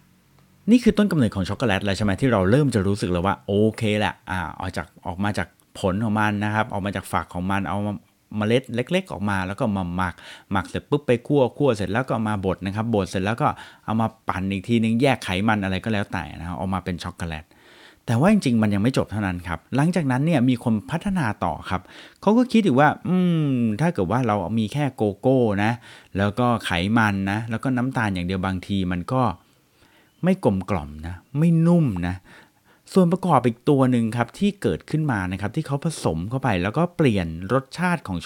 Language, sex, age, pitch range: Thai, male, 30-49, 95-135 Hz